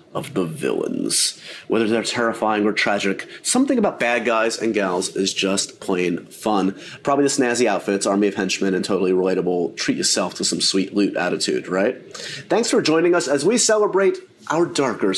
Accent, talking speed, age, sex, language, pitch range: American, 180 wpm, 30-49, male, English, 105-150 Hz